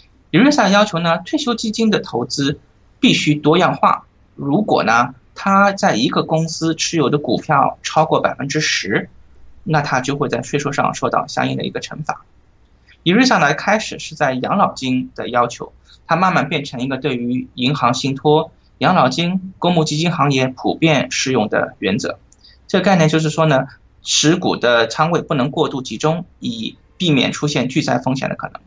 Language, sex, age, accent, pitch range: Chinese, male, 20-39, native, 130-170 Hz